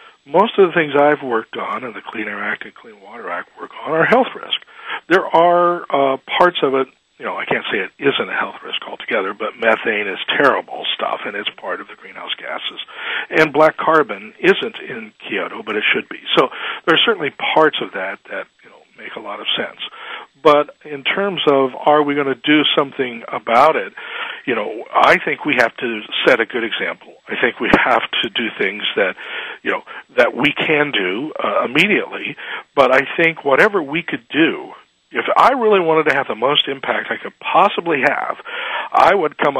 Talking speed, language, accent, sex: 210 wpm, English, American, male